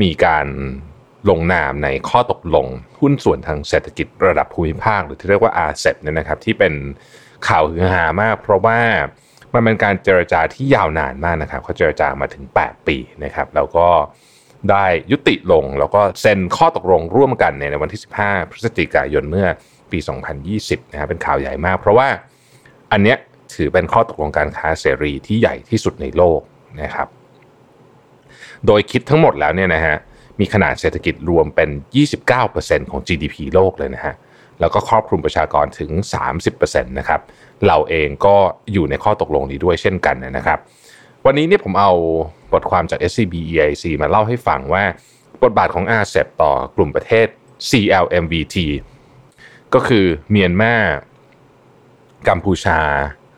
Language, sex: Thai, male